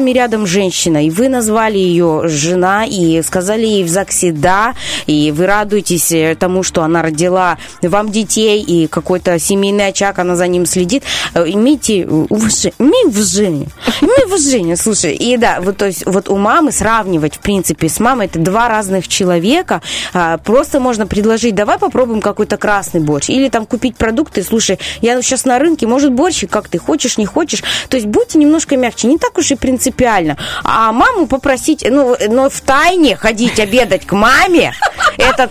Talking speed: 170 wpm